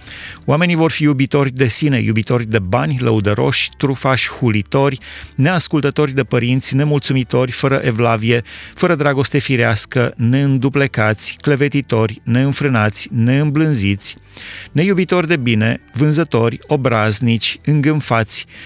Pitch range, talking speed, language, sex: 115-145 Hz, 100 wpm, Romanian, male